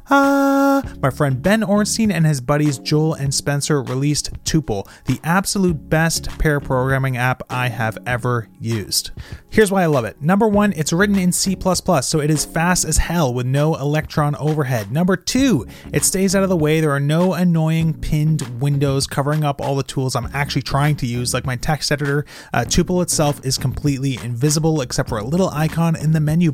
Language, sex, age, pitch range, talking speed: English, male, 30-49, 130-165 Hz, 195 wpm